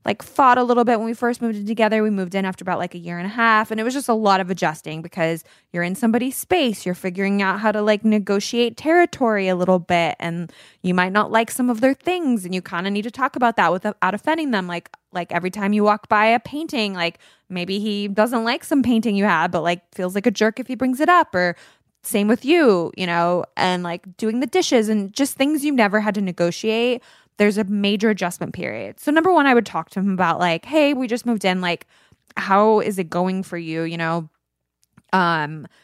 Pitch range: 180-230 Hz